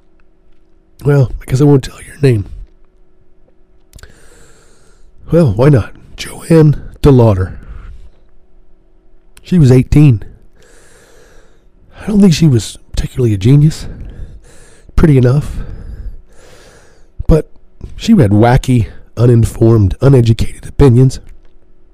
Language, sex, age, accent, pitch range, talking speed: English, male, 40-59, American, 95-140 Hz, 90 wpm